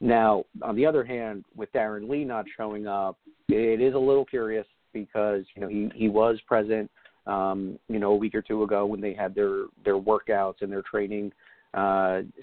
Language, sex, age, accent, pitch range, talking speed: English, male, 40-59, American, 100-110 Hz, 200 wpm